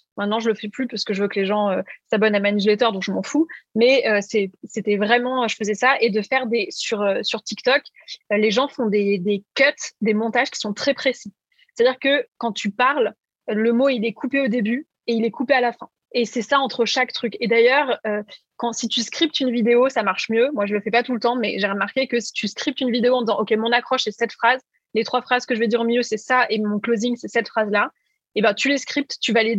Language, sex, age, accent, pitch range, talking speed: French, female, 20-39, French, 220-265 Hz, 285 wpm